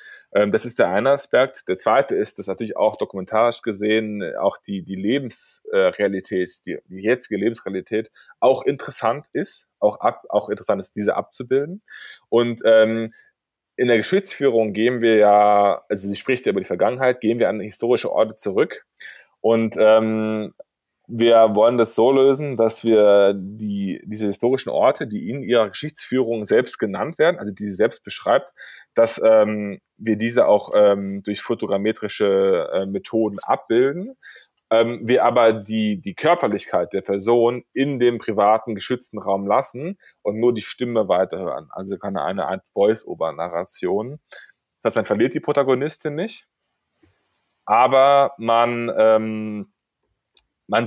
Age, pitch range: 20-39, 105-130 Hz